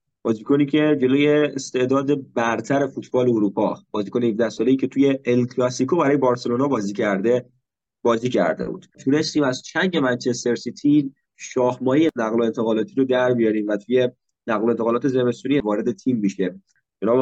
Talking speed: 145 wpm